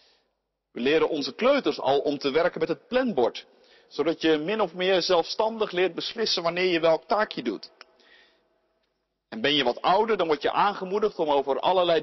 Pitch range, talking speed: 135-210 Hz, 180 wpm